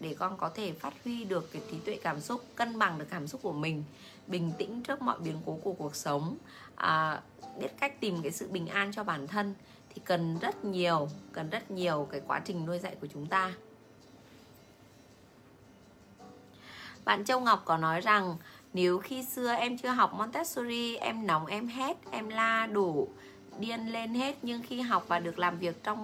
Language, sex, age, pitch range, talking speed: Vietnamese, female, 20-39, 165-230 Hz, 195 wpm